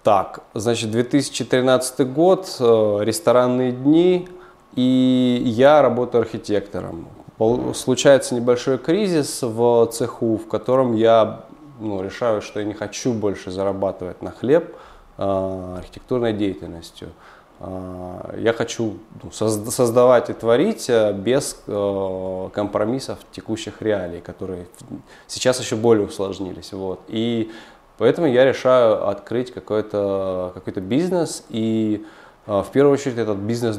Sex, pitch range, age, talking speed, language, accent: male, 100-125 Hz, 20-39, 100 wpm, Russian, native